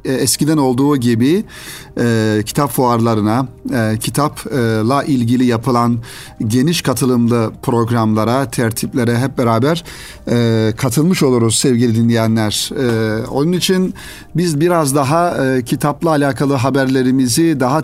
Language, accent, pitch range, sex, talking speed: Turkish, native, 115-140 Hz, male, 110 wpm